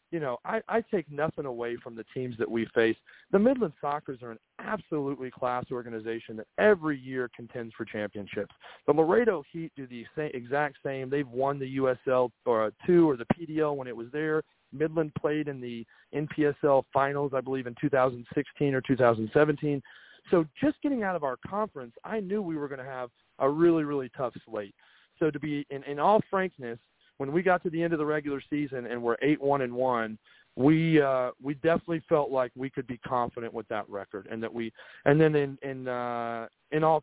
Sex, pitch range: male, 120-155 Hz